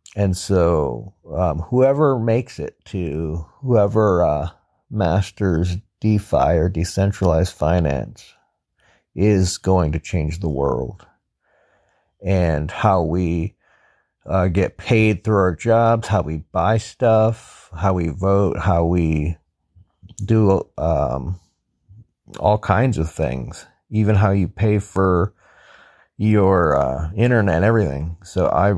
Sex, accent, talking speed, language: male, American, 115 wpm, English